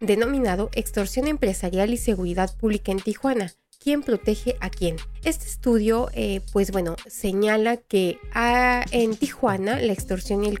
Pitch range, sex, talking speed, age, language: 190-235 Hz, female, 145 wpm, 30-49, Spanish